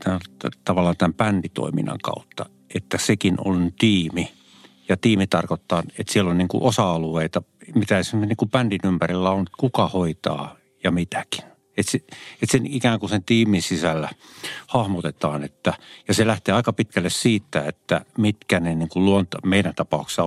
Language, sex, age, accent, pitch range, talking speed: Finnish, male, 50-69, native, 90-110 Hz, 150 wpm